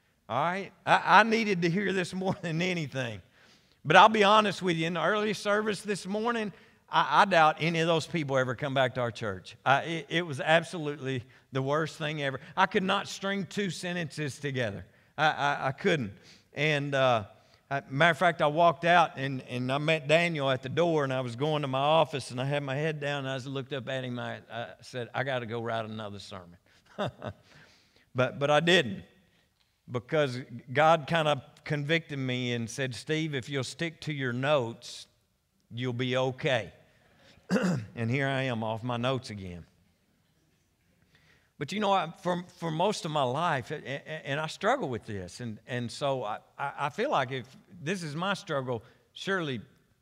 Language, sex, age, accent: English, male, 50-69, American